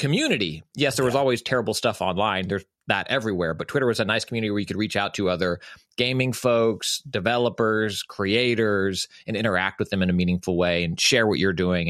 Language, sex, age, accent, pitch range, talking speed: English, male, 30-49, American, 95-120 Hz, 205 wpm